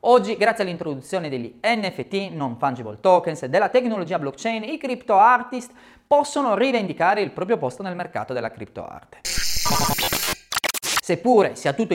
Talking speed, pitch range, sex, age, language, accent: 140 wpm, 175-260 Hz, male, 30-49, Italian, native